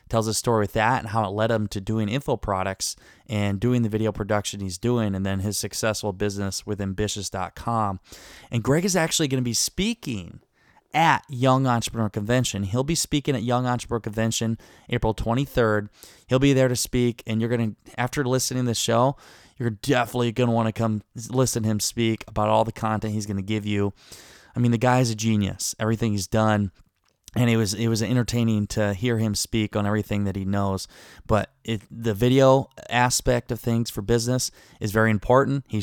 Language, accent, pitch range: English, American, 105-125 Hz